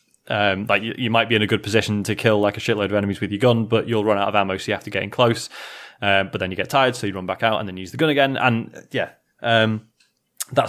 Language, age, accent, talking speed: English, 20-39, British, 305 wpm